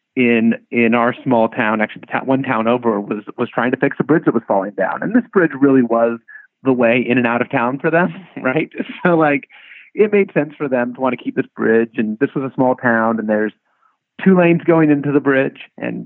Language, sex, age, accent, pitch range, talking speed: English, male, 30-49, American, 115-160 Hz, 245 wpm